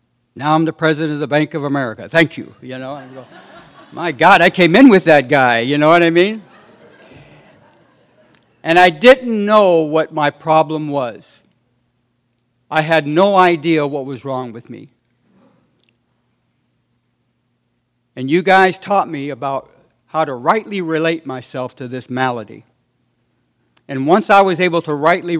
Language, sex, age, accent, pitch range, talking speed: English, male, 60-79, American, 120-160 Hz, 155 wpm